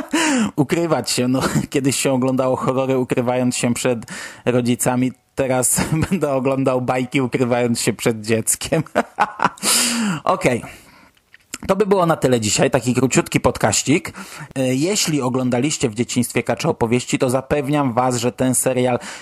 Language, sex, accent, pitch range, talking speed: Polish, male, native, 125-155 Hz, 130 wpm